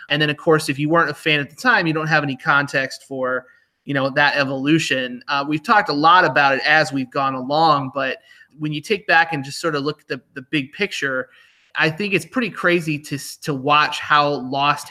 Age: 30-49